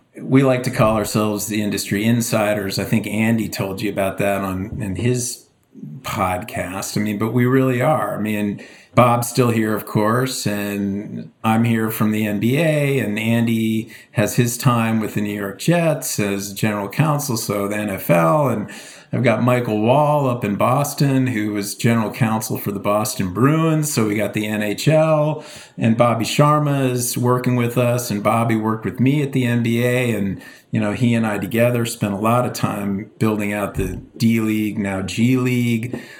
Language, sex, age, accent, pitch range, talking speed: English, male, 50-69, American, 105-125 Hz, 180 wpm